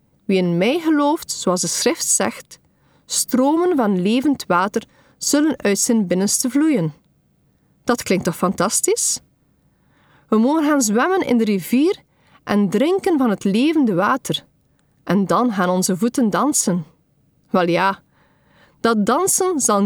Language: Dutch